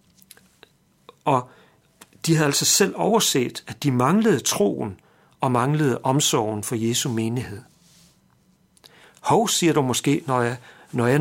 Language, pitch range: Danish, 130-180 Hz